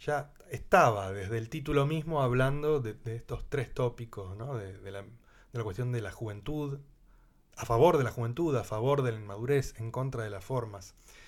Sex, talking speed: male, 180 wpm